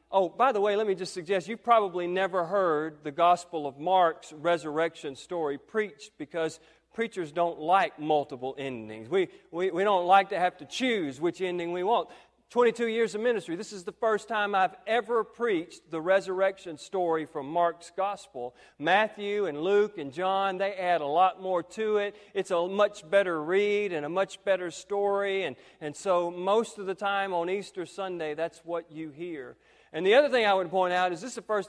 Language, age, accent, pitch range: English, 40-59, American, 165-205 Hz